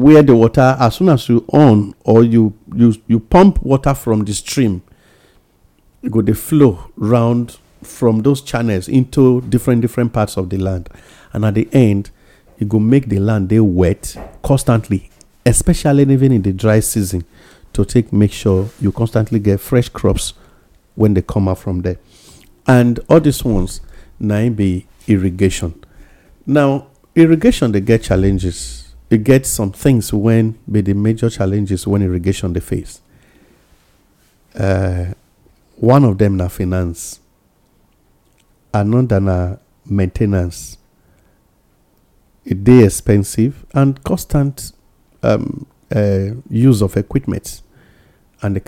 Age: 50-69